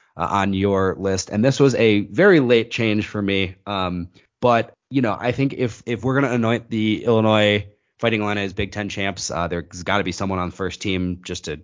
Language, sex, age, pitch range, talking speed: English, male, 20-39, 95-115 Hz, 230 wpm